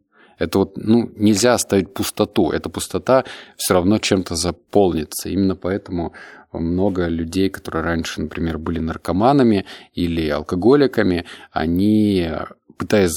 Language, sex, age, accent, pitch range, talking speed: Russian, male, 20-39, native, 85-105 Hz, 115 wpm